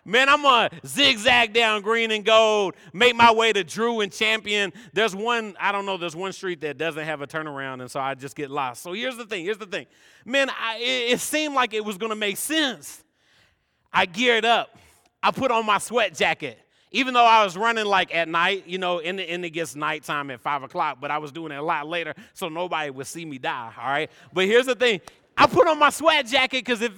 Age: 30-49